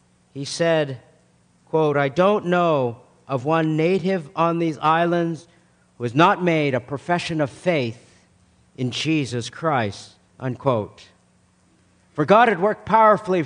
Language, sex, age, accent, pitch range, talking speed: English, male, 50-69, American, 135-180 Hz, 130 wpm